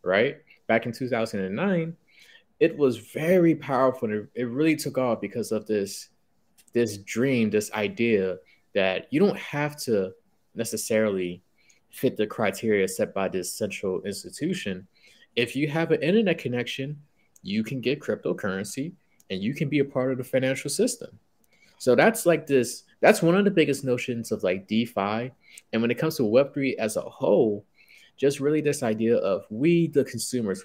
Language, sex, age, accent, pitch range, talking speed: English, male, 20-39, American, 110-145 Hz, 165 wpm